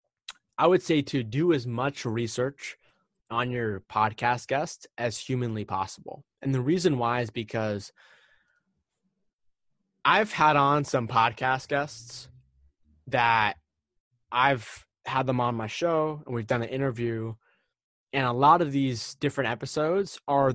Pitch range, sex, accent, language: 115-145 Hz, male, American, English